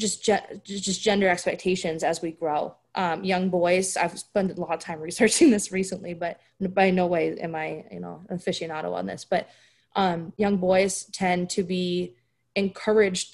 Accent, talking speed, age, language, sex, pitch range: American, 170 wpm, 20-39, English, female, 180-240 Hz